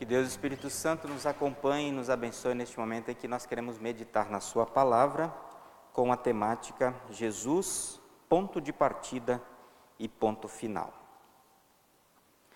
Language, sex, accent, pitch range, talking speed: Portuguese, male, Brazilian, 115-145 Hz, 140 wpm